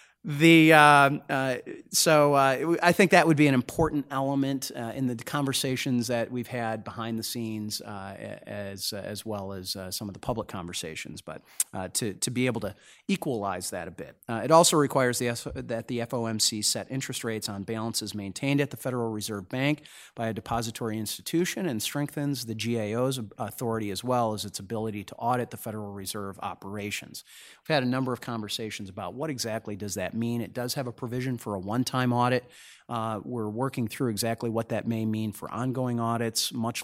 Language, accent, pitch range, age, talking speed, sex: English, American, 105-130 Hz, 30-49, 195 wpm, male